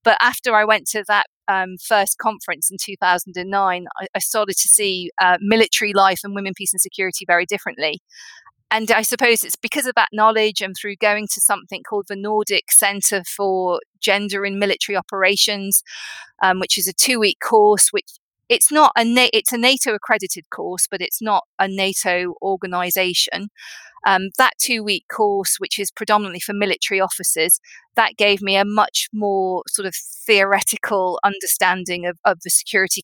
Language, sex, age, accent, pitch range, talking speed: English, female, 40-59, British, 190-225 Hz, 180 wpm